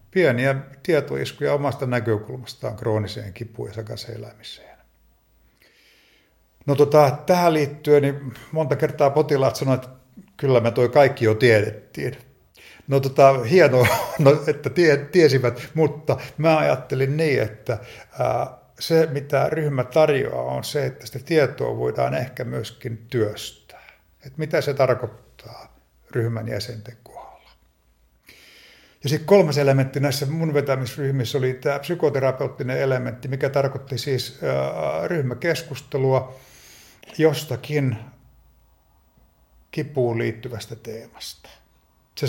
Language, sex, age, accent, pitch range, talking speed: Finnish, male, 50-69, native, 115-145 Hz, 105 wpm